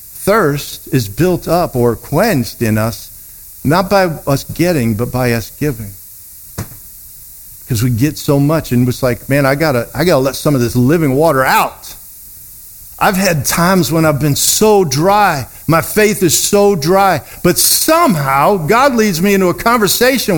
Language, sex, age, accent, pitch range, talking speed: English, male, 50-69, American, 110-175 Hz, 170 wpm